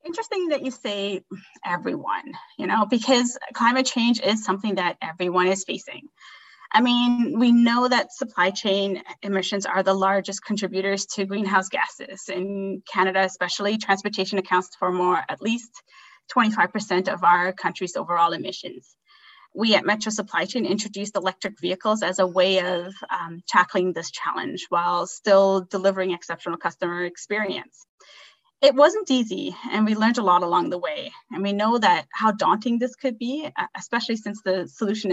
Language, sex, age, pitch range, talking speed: English, female, 20-39, 185-225 Hz, 155 wpm